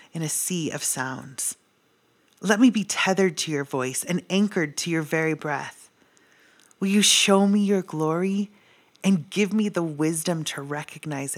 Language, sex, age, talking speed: English, female, 30-49, 165 wpm